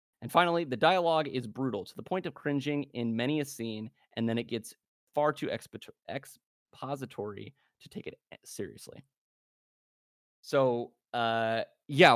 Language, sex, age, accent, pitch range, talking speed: English, male, 20-39, American, 115-140 Hz, 145 wpm